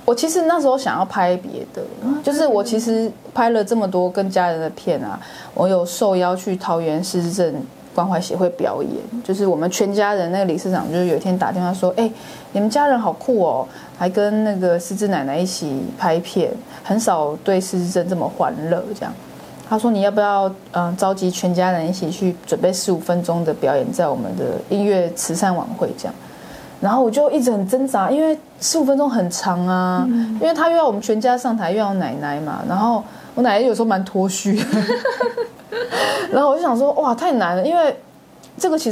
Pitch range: 180-235 Hz